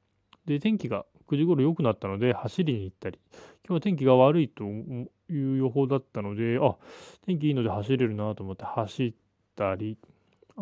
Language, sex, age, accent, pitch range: Japanese, male, 20-39, native, 105-145 Hz